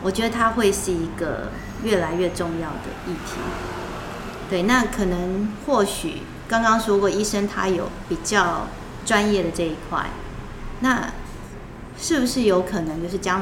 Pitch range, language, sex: 165-200 Hz, Chinese, female